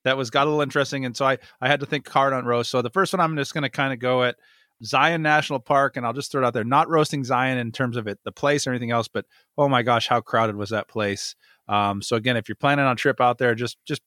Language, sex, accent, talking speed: English, male, American, 305 wpm